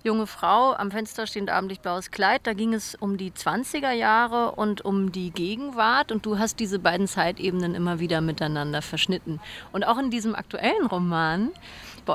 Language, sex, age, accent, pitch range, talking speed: German, female, 30-49, German, 190-240 Hz, 180 wpm